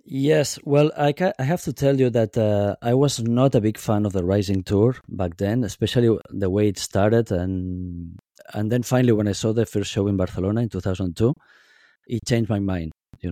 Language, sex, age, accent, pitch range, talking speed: English, male, 20-39, Spanish, 100-125 Hz, 210 wpm